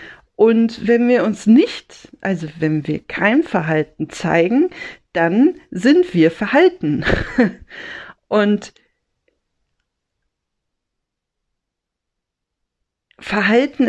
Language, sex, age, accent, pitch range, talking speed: German, female, 40-59, German, 195-255 Hz, 75 wpm